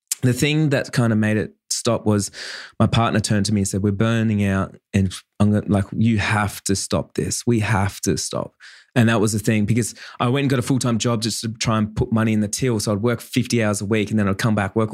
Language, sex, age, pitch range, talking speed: English, male, 20-39, 100-115 Hz, 265 wpm